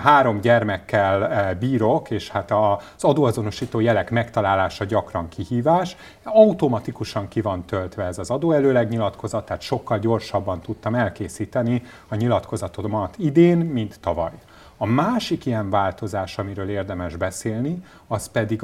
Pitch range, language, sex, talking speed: 100-120 Hz, Hungarian, male, 120 wpm